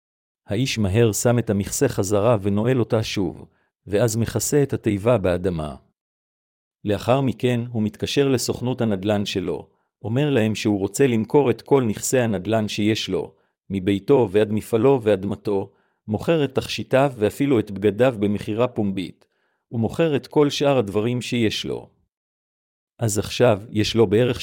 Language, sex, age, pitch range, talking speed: Hebrew, male, 50-69, 100-125 Hz, 140 wpm